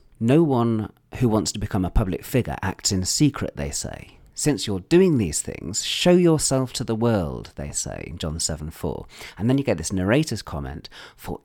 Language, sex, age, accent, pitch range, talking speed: English, male, 40-59, British, 95-135 Hz, 200 wpm